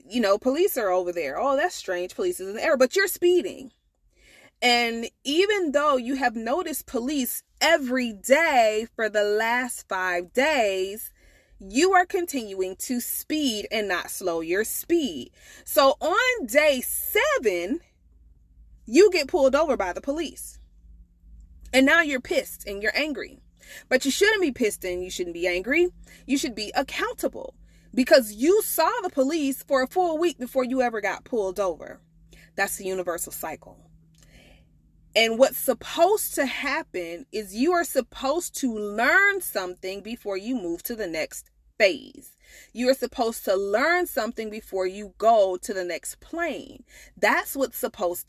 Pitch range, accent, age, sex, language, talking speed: 195-305 Hz, American, 30-49, female, English, 155 wpm